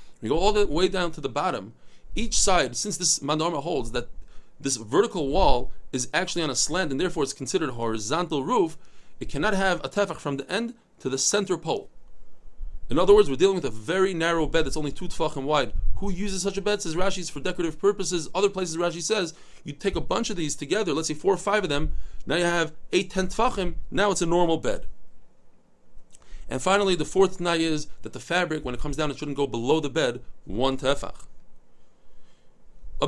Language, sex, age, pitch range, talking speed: English, male, 30-49, 145-195 Hz, 215 wpm